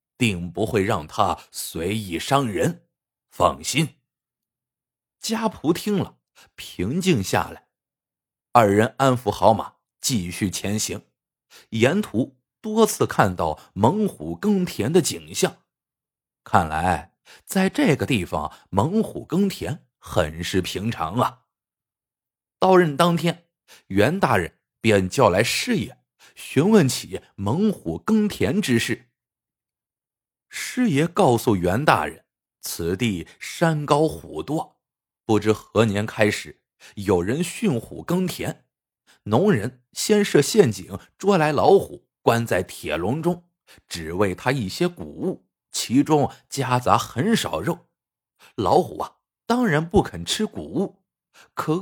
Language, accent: Chinese, native